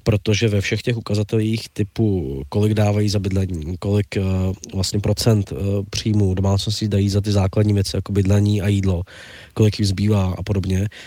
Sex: male